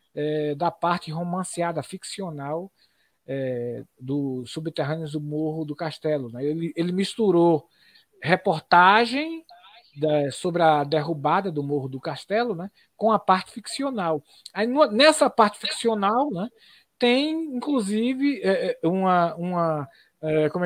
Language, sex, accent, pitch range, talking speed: Portuguese, male, Brazilian, 145-190 Hz, 95 wpm